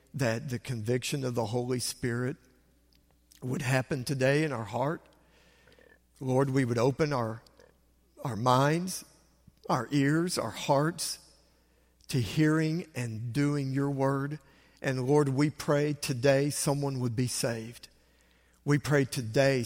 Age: 50-69